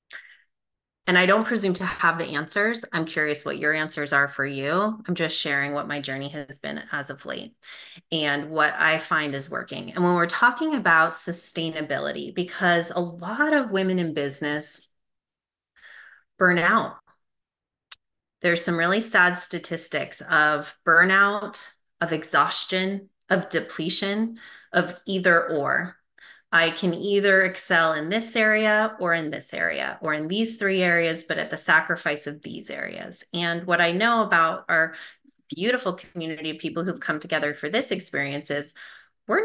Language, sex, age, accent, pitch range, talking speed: English, female, 30-49, American, 155-200 Hz, 155 wpm